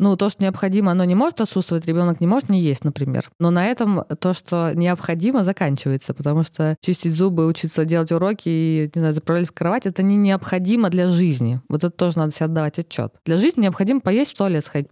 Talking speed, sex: 215 wpm, female